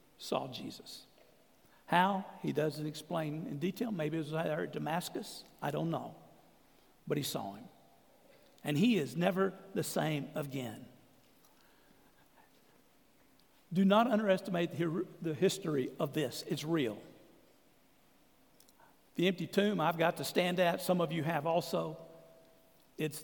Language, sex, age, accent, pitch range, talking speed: English, male, 60-79, American, 160-200 Hz, 130 wpm